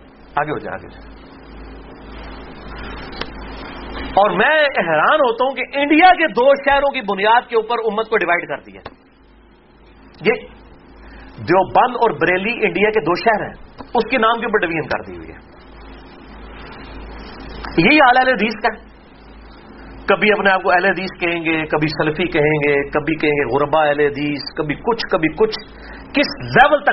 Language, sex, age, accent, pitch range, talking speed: English, male, 40-59, Indian, 160-230 Hz, 125 wpm